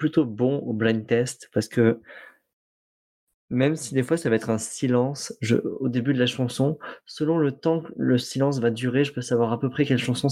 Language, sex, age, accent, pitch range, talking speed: French, male, 20-39, French, 110-130 Hz, 220 wpm